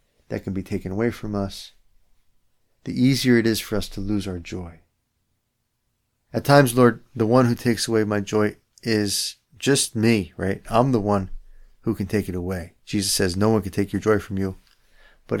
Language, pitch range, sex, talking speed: English, 95-115 Hz, male, 195 wpm